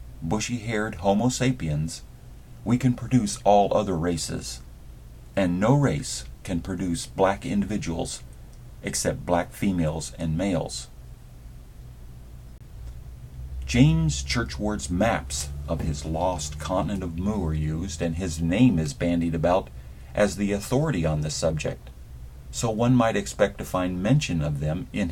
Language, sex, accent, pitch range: English, male, American, 70-100 Hz